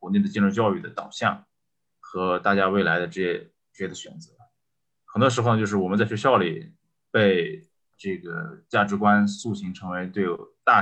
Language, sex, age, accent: Chinese, male, 20-39, native